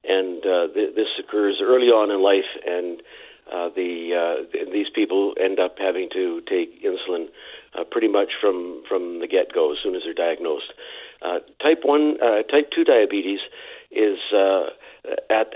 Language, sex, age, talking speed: English, male, 50-69, 170 wpm